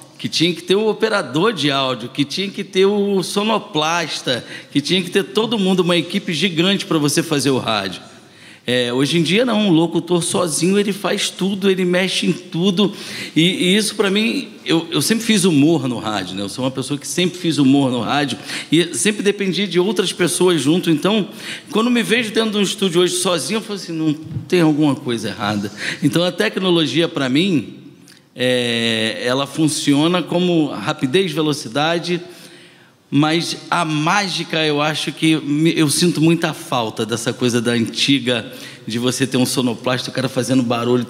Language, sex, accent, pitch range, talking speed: Portuguese, male, Brazilian, 135-180 Hz, 185 wpm